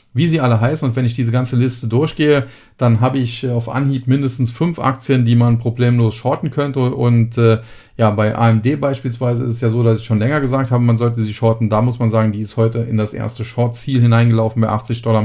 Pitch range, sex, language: 110-130 Hz, male, German